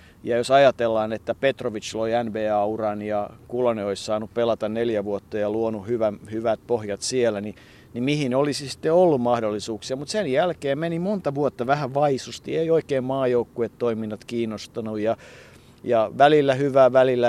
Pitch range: 110-135 Hz